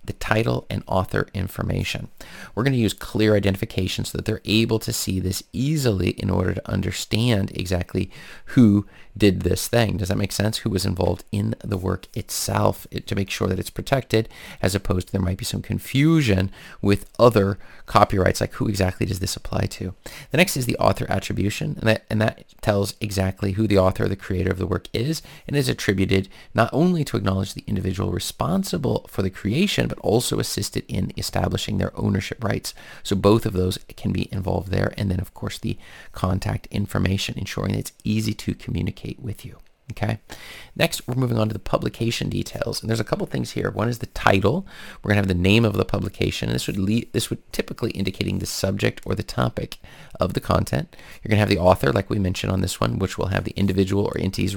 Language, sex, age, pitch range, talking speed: English, male, 30-49, 95-115 Hz, 205 wpm